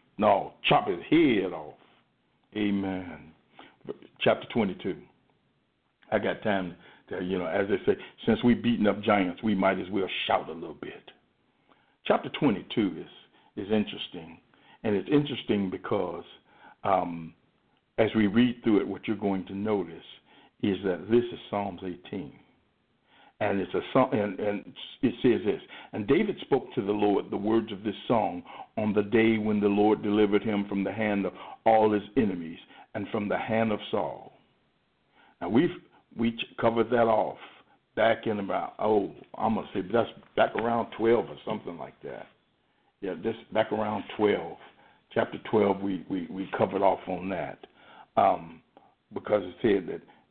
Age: 60-79